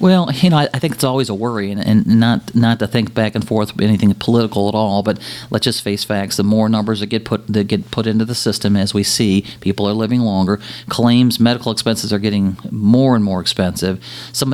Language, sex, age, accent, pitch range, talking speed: English, male, 40-59, American, 100-120 Hz, 225 wpm